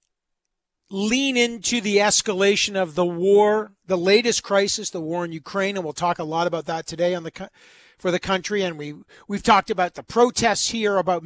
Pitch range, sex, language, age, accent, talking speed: 180-220 Hz, male, English, 40-59, American, 190 wpm